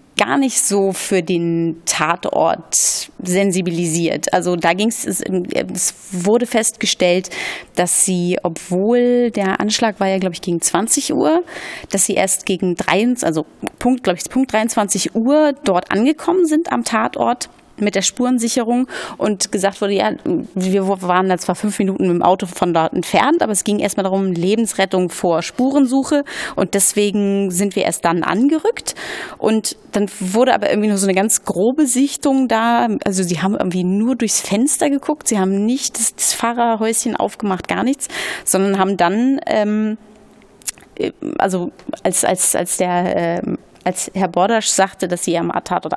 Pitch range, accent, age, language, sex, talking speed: 185-240 Hz, German, 30-49, German, female, 160 wpm